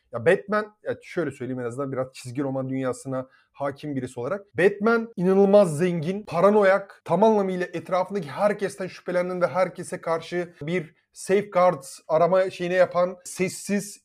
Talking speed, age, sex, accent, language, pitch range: 135 wpm, 30-49, male, native, Turkish, 175-235 Hz